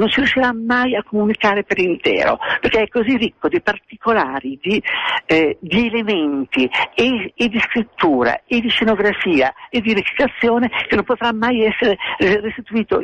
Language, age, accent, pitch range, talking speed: Italian, 50-69, native, 175-240 Hz, 155 wpm